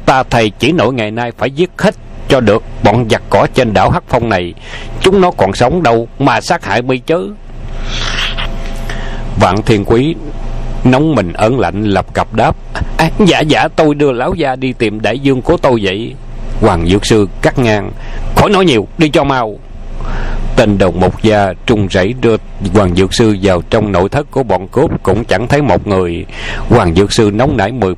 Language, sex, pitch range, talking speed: Vietnamese, male, 105-135 Hz, 200 wpm